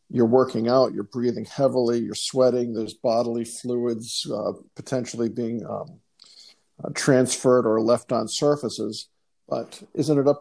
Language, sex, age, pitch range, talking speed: English, male, 50-69, 115-135 Hz, 145 wpm